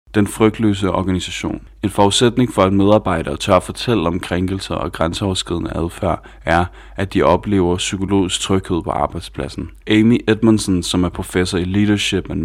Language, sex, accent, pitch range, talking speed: Danish, male, native, 90-100 Hz, 150 wpm